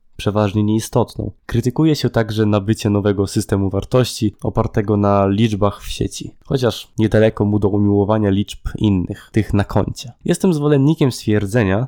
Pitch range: 105-120 Hz